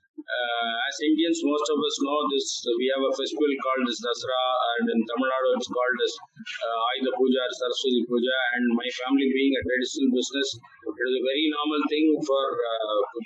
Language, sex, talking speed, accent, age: English, male, 185 wpm, Indian, 20-39